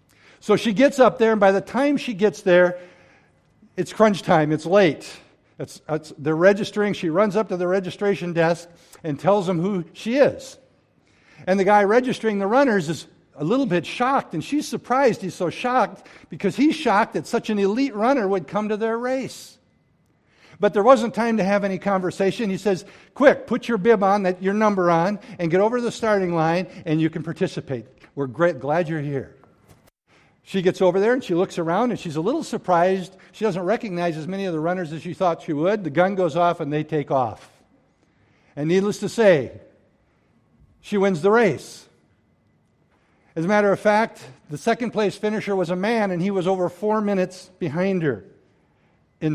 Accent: American